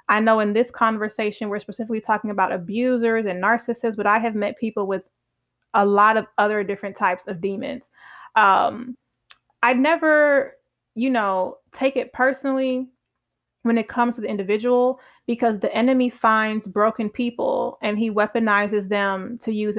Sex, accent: female, American